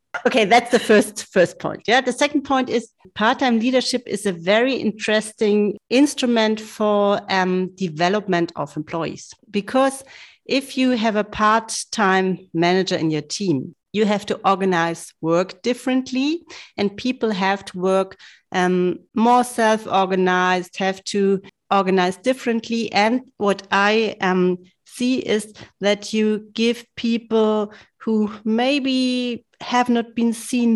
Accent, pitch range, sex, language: German, 195-235 Hz, female, English